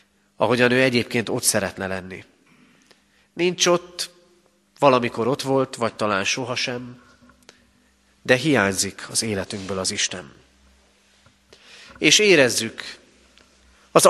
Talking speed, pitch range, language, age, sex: 100 wpm, 105-150 Hz, Hungarian, 30-49, male